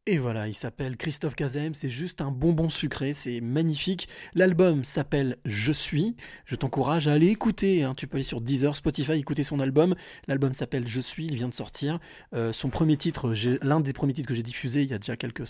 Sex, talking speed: male, 235 wpm